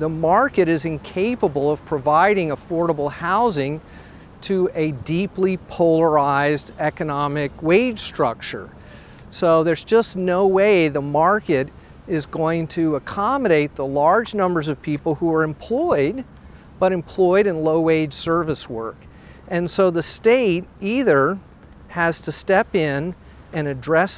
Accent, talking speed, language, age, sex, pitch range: American, 130 wpm, English, 40-59, male, 140-180 Hz